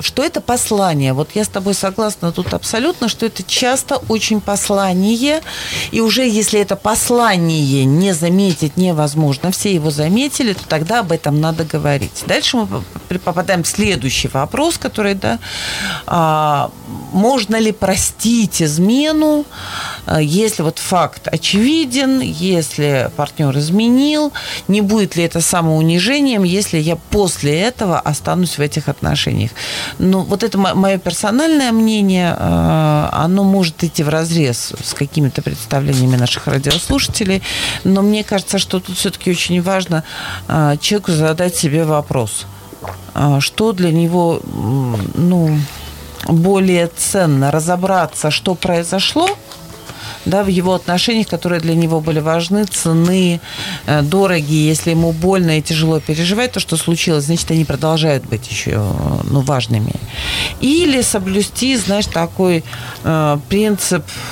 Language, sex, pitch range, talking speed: Russian, female, 150-200 Hz, 125 wpm